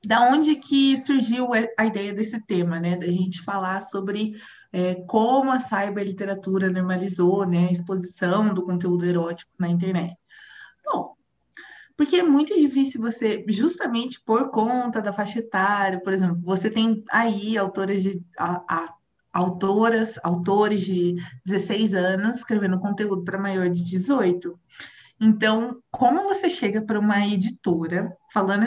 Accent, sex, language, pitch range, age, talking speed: Brazilian, female, Portuguese, 190-250 Hz, 20-39, 140 wpm